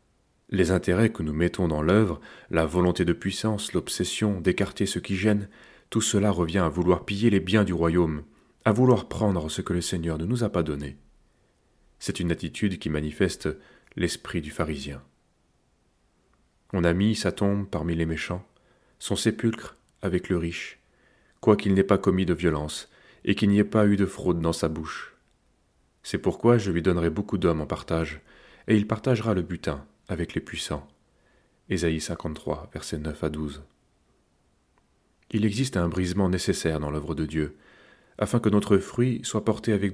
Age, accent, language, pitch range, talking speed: 30-49, French, French, 80-100 Hz, 175 wpm